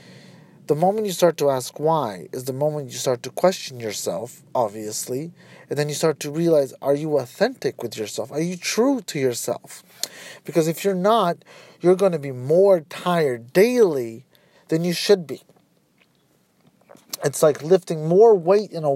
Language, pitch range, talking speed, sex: English, 145-190 Hz, 170 wpm, male